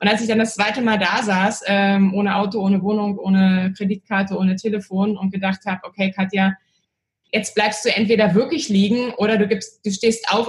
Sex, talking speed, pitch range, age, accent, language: female, 195 wpm, 190-220 Hz, 20-39, German, German